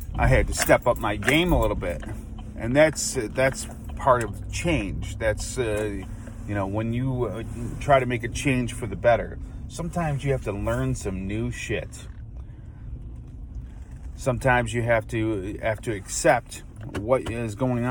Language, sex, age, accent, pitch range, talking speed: English, male, 30-49, American, 100-125 Hz, 165 wpm